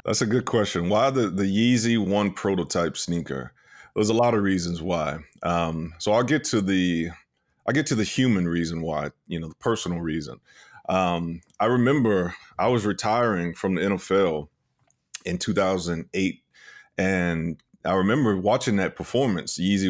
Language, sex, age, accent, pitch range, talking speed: English, male, 30-49, American, 85-100 Hz, 160 wpm